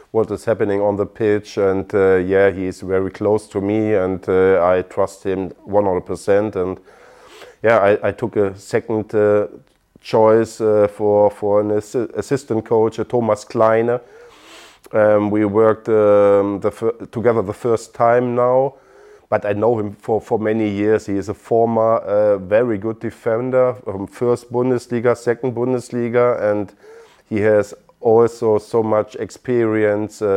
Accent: German